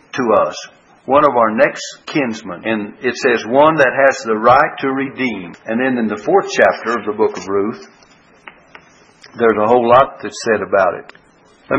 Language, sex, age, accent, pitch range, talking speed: English, male, 60-79, American, 115-135 Hz, 190 wpm